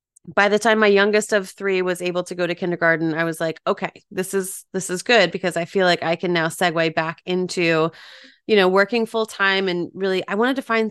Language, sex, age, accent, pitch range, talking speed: English, female, 30-49, American, 170-200 Hz, 235 wpm